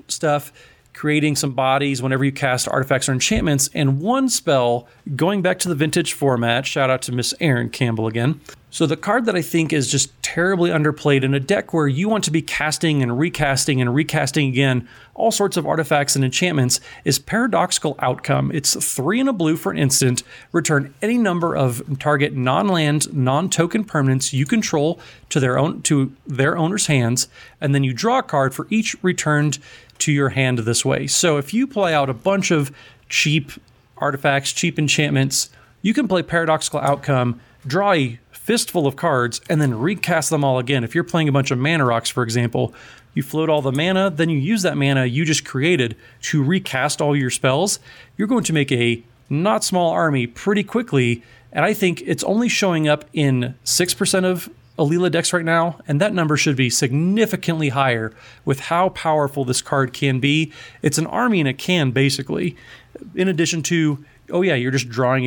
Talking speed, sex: 190 wpm, male